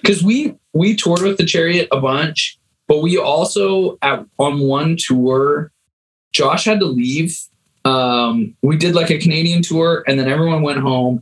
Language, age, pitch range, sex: English, 20-39, 135-170 Hz, male